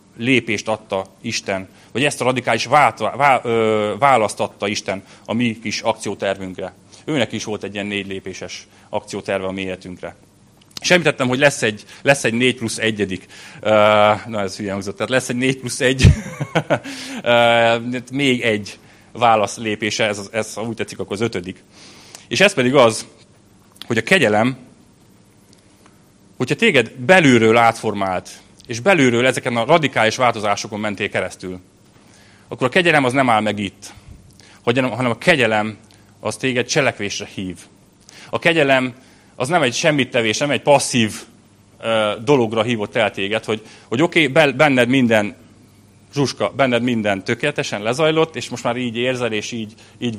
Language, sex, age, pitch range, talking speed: Hungarian, male, 30-49, 100-125 Hz, 145 wpm